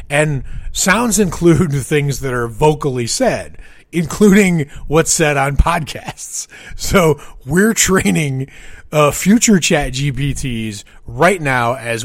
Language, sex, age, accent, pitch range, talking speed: English, male, 30-49, American, 120-160 Hz, 115 wpm